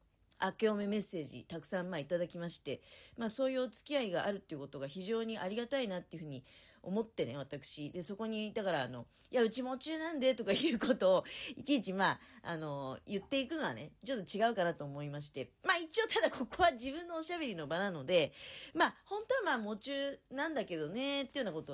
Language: Japanese